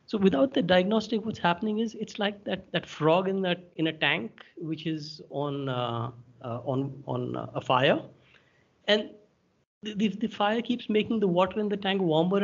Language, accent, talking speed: English, Indian, 195 wpm